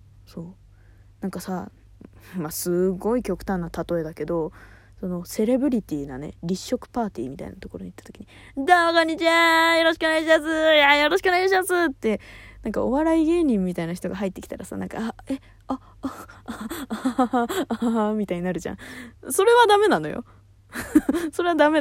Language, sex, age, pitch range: Japanese, female, 20-39, 170-285 Hz